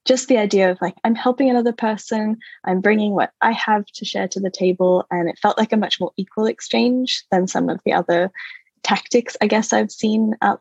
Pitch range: 200-260 Hz